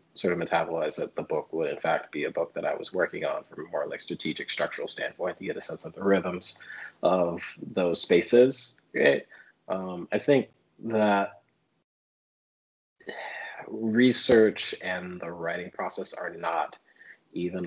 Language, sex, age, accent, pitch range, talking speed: English, male, 20-39, American, 90-125 Hz, 160 wpm